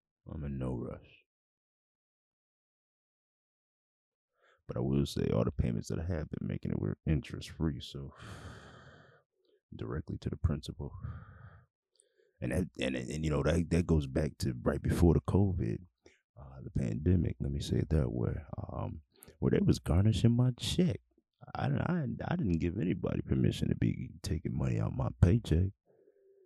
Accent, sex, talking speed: American, male, 160 wpm